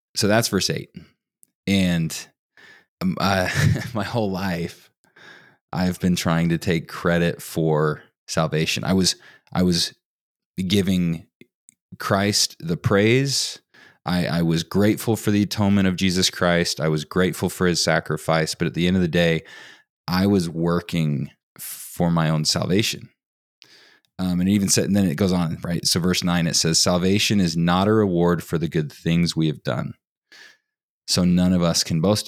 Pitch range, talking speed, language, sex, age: 85-100 Hz, 165 wpm, English, male, 20-39